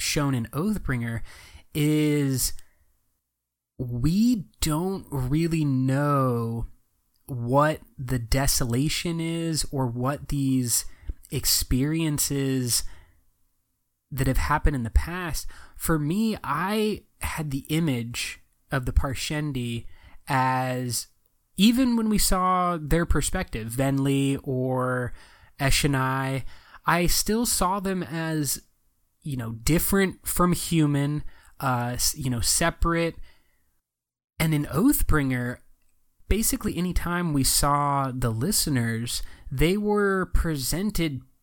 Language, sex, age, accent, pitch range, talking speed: English, male, 20-39, American, 125-165 Hz, 100 wpm